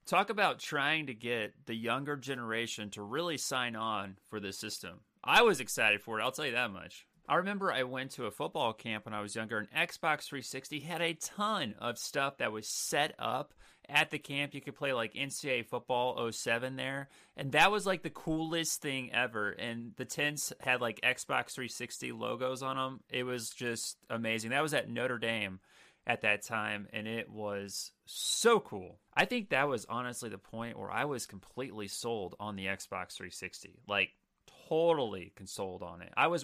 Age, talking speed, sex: 30-49, 195 wpm, male